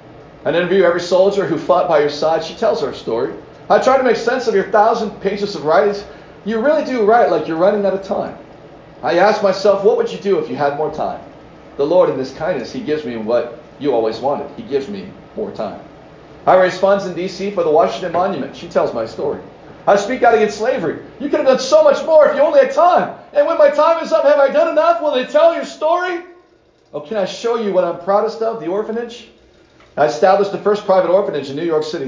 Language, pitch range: English, 140-230 Hz